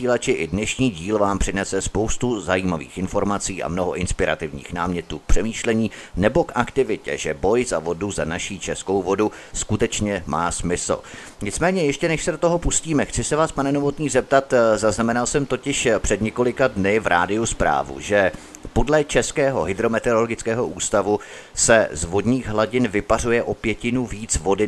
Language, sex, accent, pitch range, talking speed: Czech, male, native, 100-125 Hz, 160 wpm